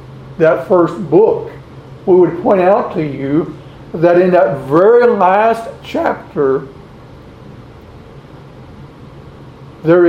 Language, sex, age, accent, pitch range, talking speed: English, male, 60-79, American, 145-180 Hz, 95 wpm